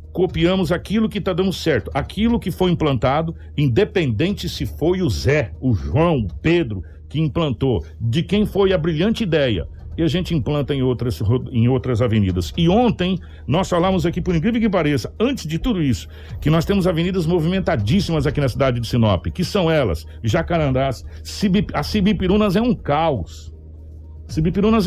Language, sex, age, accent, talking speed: Portuguese, male, 60-79, Brazilian, 165 wpm